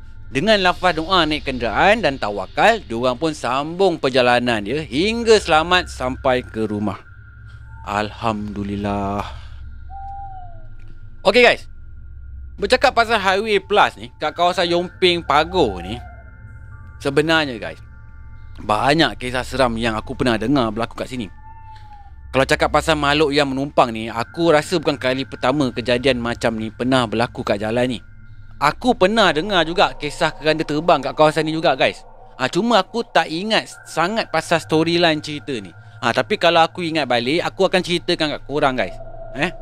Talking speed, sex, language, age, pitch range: 145 wpm, male, Malay, 30-49, 115-165 Hz